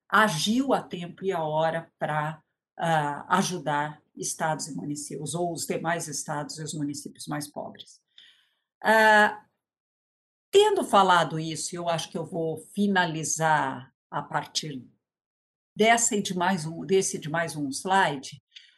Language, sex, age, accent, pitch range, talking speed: Portuguese, female, 50-69, Brazilian, 160-215 Hz, 140 wpm